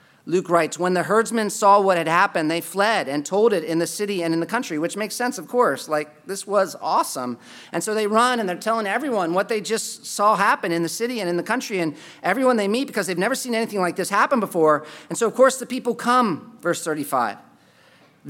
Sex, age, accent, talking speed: male, 40-59, American, 235 wpm